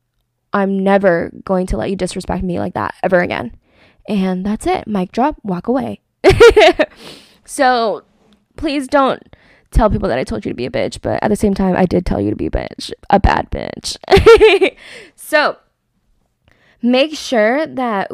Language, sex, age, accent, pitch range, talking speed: English, female, 10-29, American, 190-255 Hz, 170 wpm